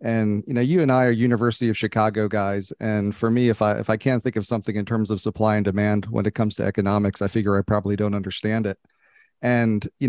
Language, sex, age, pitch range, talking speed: English, male, 40-59, 105-120 Hz, 250 wpm